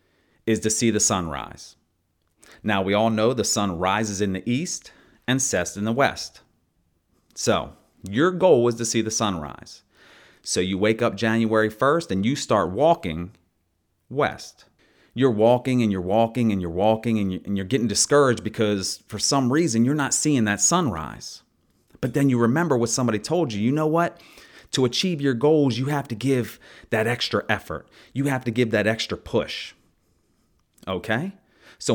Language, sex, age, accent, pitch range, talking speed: English, male, 30-49, American, 100-125 Hz, 170 wpm